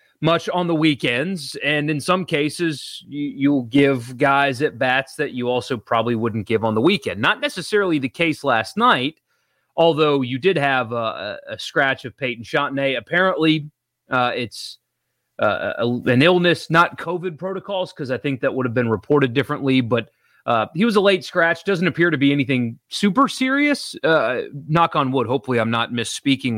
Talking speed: 175 wpm